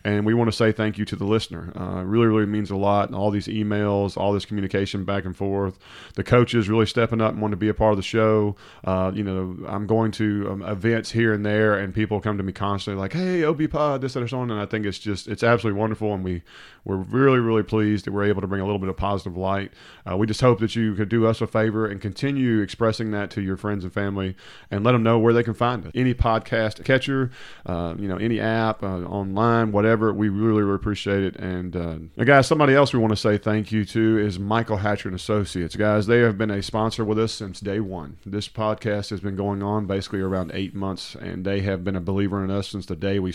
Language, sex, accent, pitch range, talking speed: English, male, American, 100-110 Hz, 260 wpm